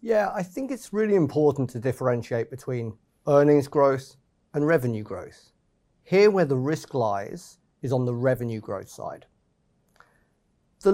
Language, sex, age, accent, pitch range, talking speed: English, male, 40-59, British, 120-175 Hz, 145 wpm